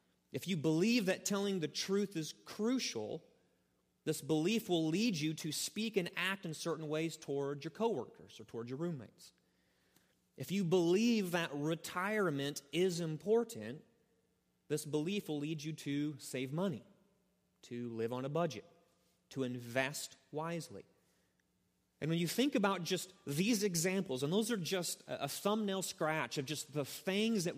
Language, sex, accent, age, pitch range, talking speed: English, male, American, 30-49, 150-205 Hz, 155 wpm